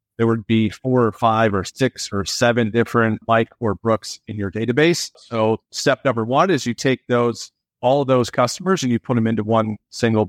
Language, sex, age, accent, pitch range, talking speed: English, male, 30-49, American, 110-125 Hz, 210 wpm